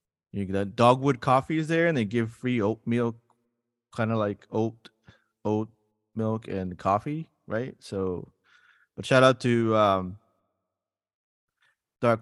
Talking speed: 145 wpm